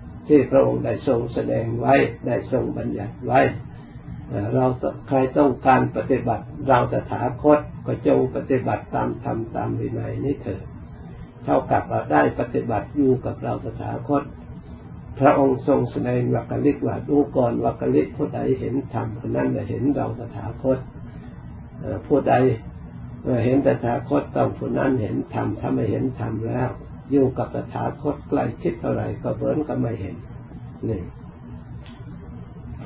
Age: 60-79